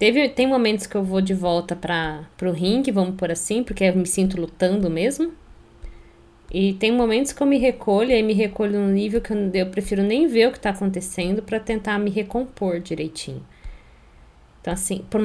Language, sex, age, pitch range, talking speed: Portuguese, female, 20-39, 165-245 Hz, 190 wpm